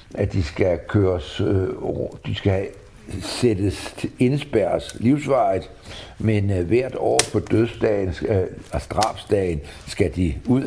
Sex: male